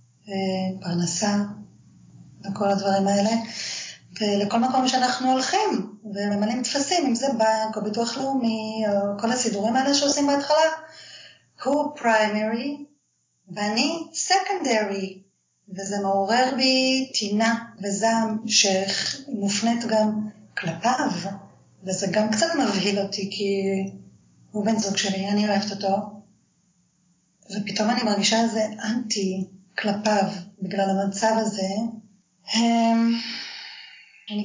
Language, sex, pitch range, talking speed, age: Hebrew, female, 200-230 Hz, 100 wpm, 20-39